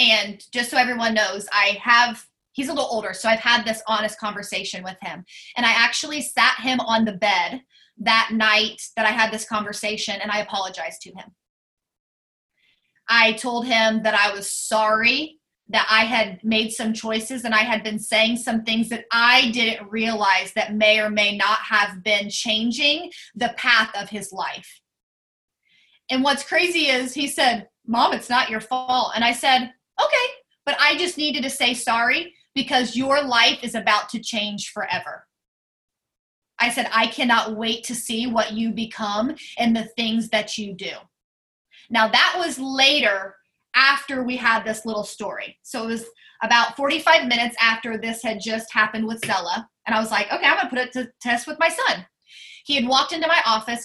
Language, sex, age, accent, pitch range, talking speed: English, female, 20-39, American, 215-255 Hz, 185 wpm